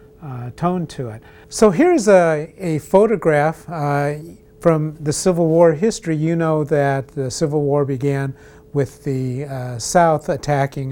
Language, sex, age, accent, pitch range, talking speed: English, male, 50-69, American, 130-160 Hz, 150 wpm